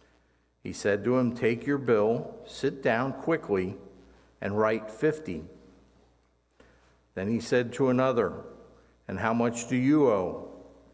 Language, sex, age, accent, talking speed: English, male, 50-69, American, 130 wpm